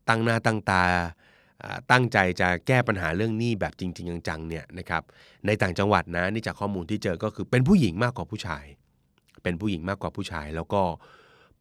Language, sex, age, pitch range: Thai, male, 20-39, 90-115 Hz